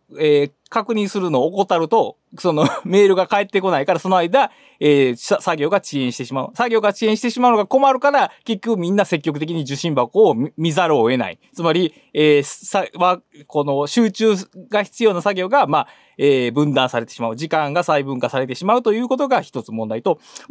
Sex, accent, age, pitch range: male, native, 20-39, 150-235 Hz